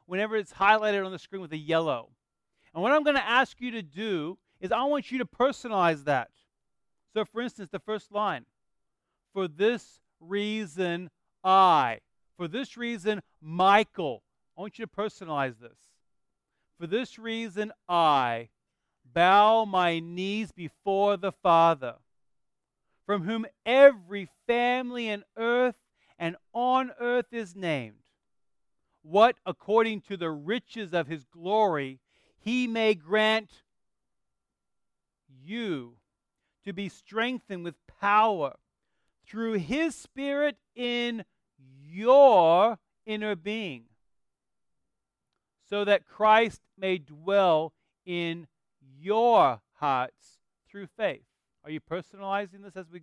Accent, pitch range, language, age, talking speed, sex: American, 170-225 Hz, English, 40-59, 120 wpm, male